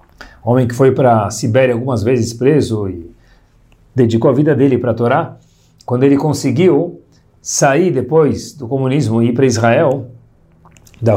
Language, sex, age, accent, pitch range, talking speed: Portuguese, male, 50-69, Brazilian, 120-165 Hz, 155 wpm